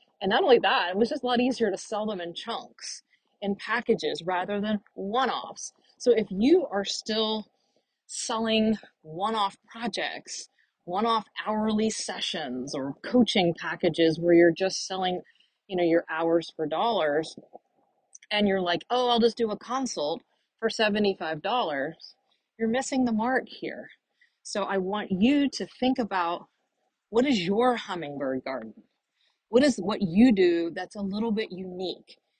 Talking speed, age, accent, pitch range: 150 wpm, 30-49, American, 185-240 Hz